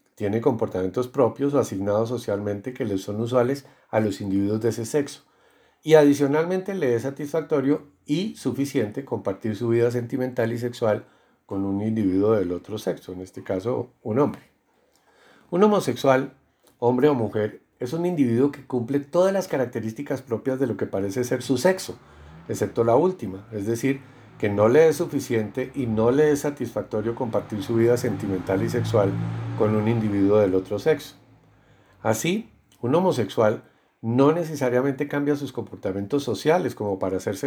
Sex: male